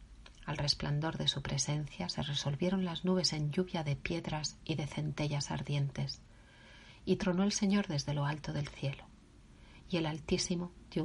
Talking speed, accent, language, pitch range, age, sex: 165 wpm, Spanish, Spanish, 140-180 Hz, 40-59, female